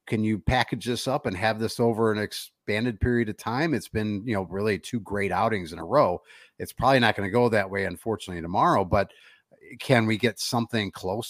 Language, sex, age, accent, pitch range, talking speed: English, male, 50-69, American, 100-120 Hz, 220 wpm